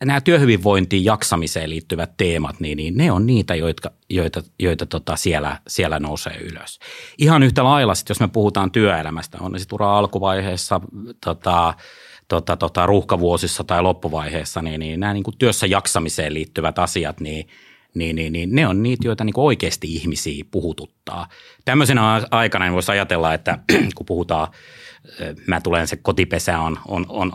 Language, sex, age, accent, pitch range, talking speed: Finnish, male, 30-49, native, 80-105 Hz, 160 wpm